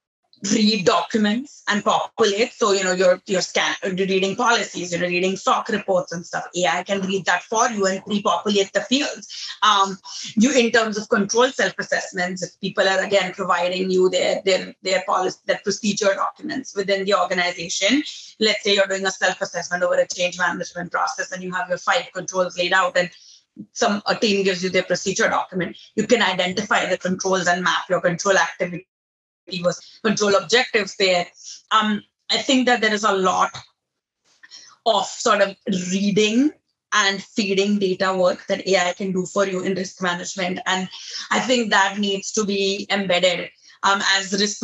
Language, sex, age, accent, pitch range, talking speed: English, female, 30-49, Indian, 185-215 Hz, 175 wpm